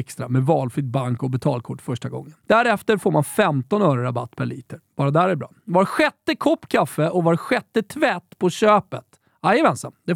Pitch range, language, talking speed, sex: 135-205 Hz, Swedish, 190 wpm, male